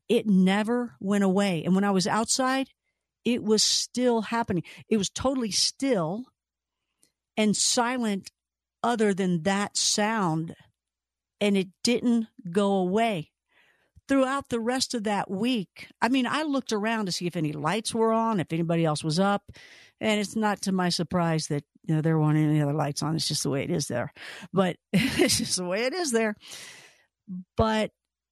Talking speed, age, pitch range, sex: 175 wpm, 50-69, 170-220 Hz, female